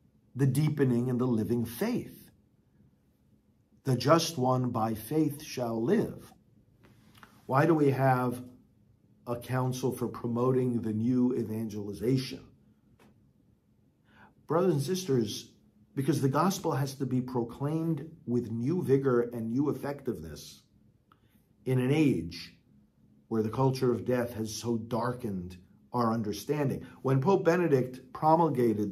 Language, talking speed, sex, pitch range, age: English, 120 wpm, male, 115-160 Hz, 50-69